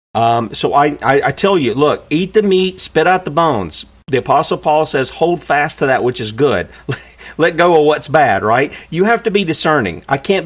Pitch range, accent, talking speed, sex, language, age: 125-180 Hz, American, 225 wpm, male, English, 50-69